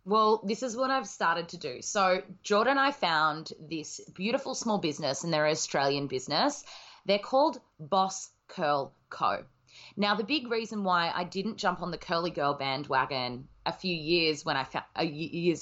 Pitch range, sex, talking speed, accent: 155-210 Hz, female, 180 wpm, Australian